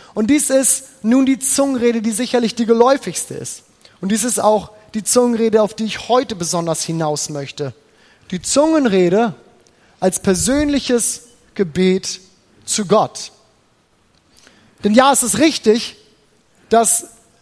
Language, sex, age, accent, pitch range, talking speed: German, male, 30-49, German, 205-255 Hz, 125 wpm